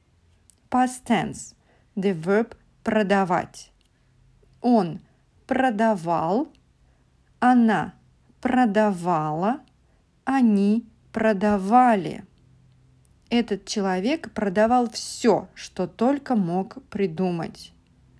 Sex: female